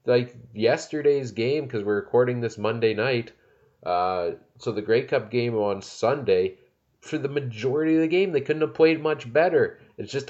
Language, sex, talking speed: English, male, 180 wpm